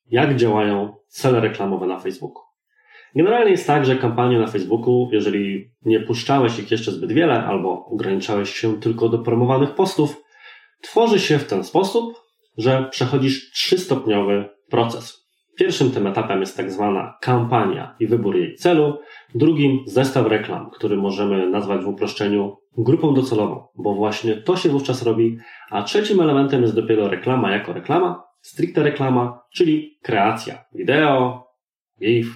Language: Polish